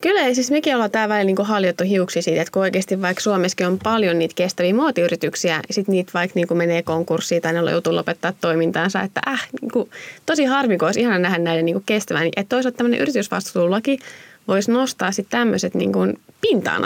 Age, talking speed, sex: 20-39, 200 wpm, female